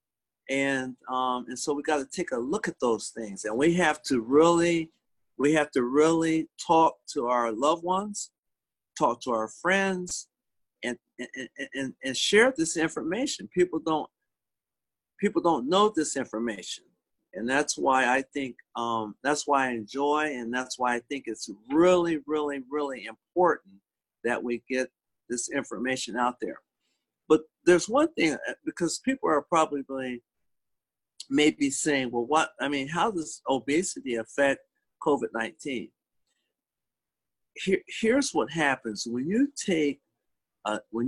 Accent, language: American, English